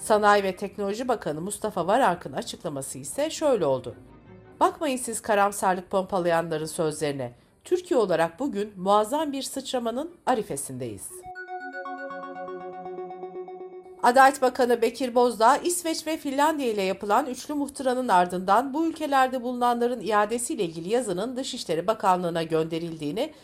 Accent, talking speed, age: native, 115 wpm, 50-69